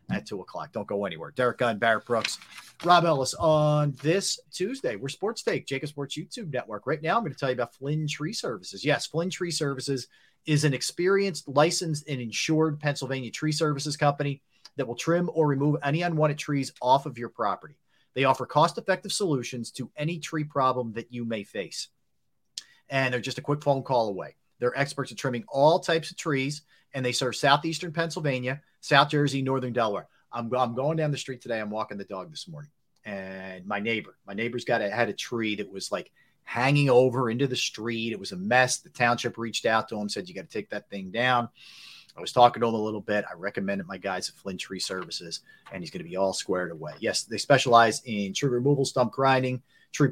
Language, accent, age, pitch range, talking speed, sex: English, American, 40-59, 115-150 Hz, 215 wpm, male